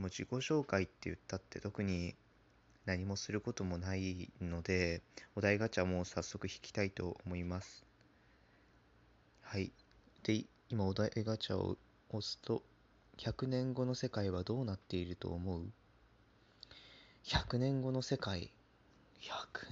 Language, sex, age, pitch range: Japanese, male, 20-39, 95-130 Hz